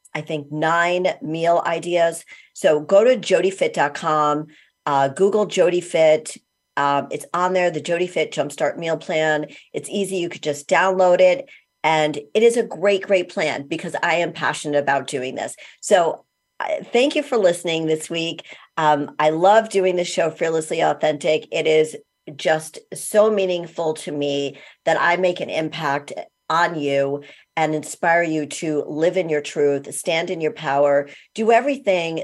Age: 50-69